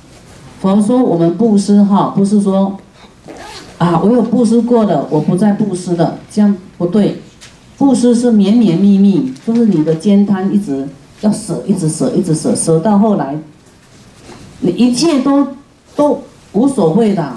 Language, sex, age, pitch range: Chinese, female, 40-59, 165-215 Hz